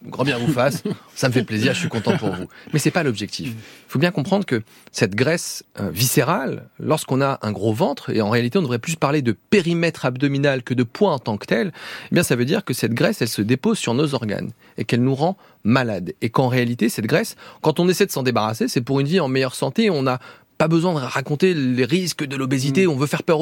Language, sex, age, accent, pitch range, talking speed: French, male, 30-49, French, 130-195 Hz, 255 wpm